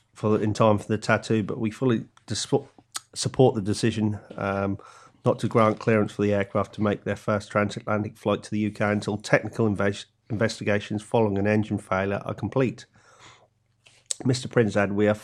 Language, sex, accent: English, male, British